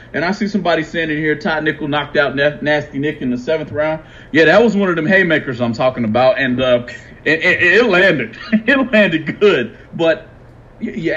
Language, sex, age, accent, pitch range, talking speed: English, male, 40-59, American, 125-190 Hz, 195 wpm